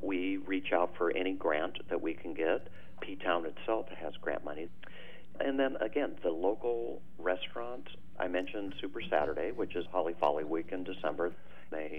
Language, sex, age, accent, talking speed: English, male, 50-69, American, 165 wpm